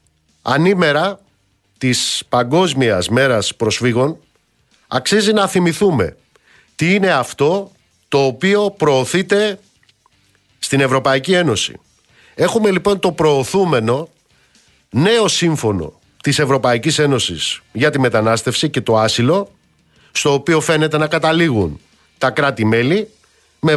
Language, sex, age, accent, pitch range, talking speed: Greek, male, 50-69, native, 125-175 Hz, 100 wpm